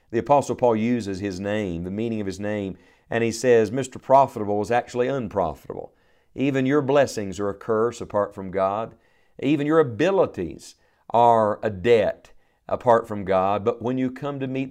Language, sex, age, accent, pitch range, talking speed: English, male, 50-69, American, 105-125 Hz, 175 wpm